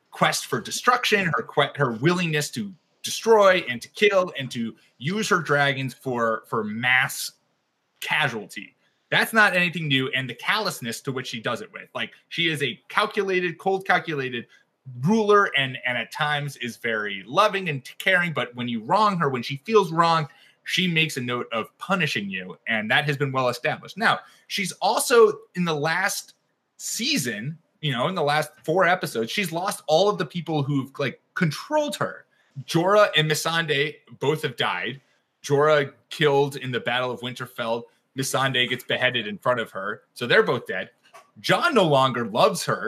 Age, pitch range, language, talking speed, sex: 20-39, 125-180 Hz, English, 175 wpm, male